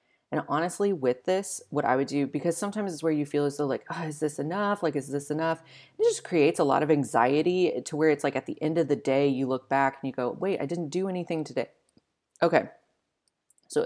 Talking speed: 240 wpm